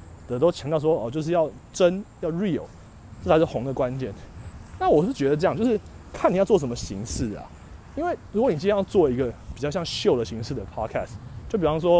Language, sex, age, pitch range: Chinese, male, 20-39, 120-195 Hz